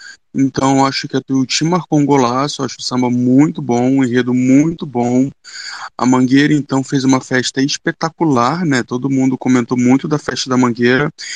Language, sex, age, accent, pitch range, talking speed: Portuguese, male, 20-39, Brazilian, 125-150 Hz, 170 wpm